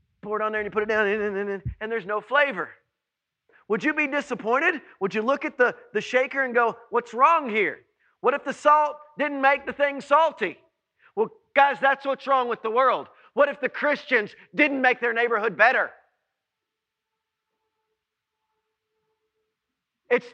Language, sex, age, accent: English, male, 40-59, American